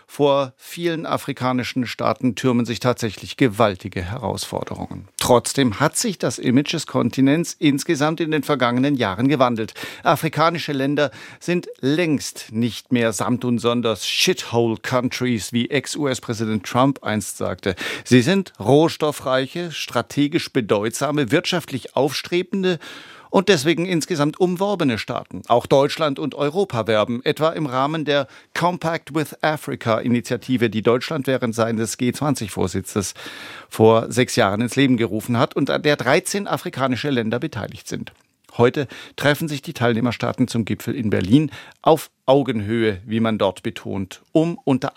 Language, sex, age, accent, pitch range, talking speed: German, male, 50-69, German, 115-150 Hz, 130 wpm